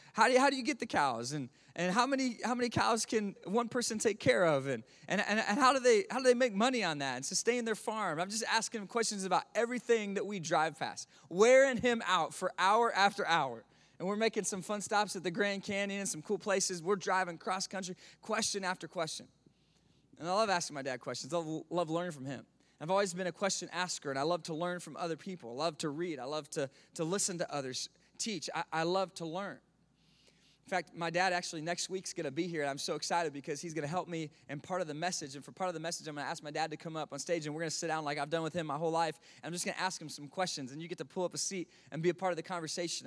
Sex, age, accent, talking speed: male, 20-39, American, 285 wpm